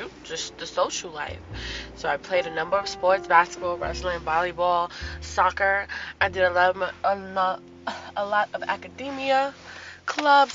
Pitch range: 175-240 Hz